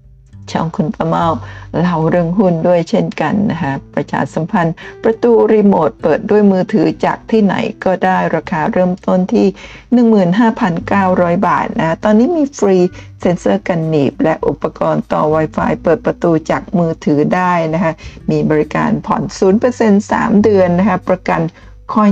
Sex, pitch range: female, 155-210 Hz